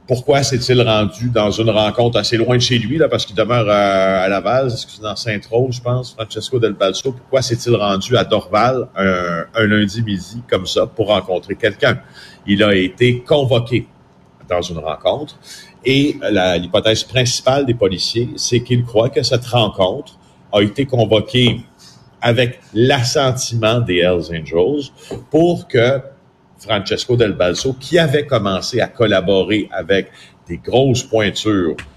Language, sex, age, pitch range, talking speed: French, male, 50-69, 100-130 Hz, 155 wpm